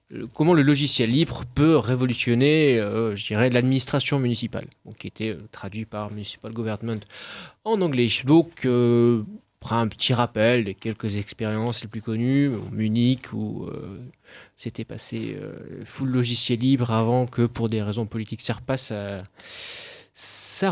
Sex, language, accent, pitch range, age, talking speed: male, French, French, 110-135 Hz, 20-39, 155 wpm